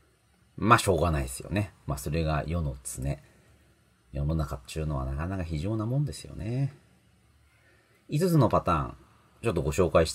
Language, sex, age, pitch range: Japanese, male, 40-59, 80-130 Hz